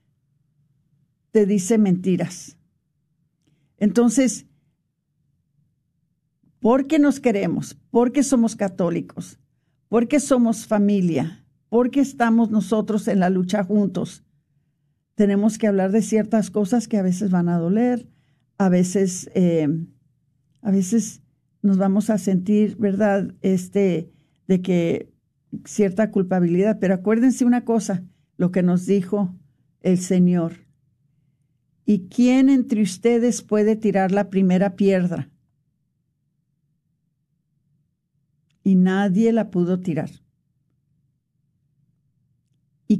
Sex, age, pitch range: female, 50-69, 150-210 Hz